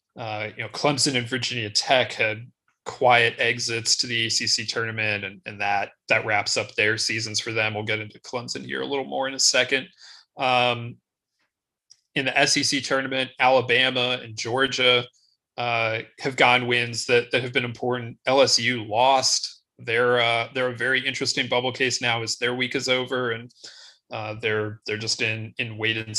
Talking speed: 175 wpm